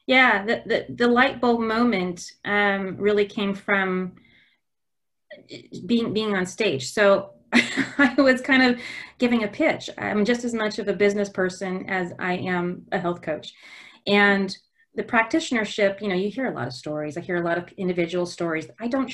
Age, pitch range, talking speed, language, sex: 30-49, 170-230 Hz, 180 wpm, English, female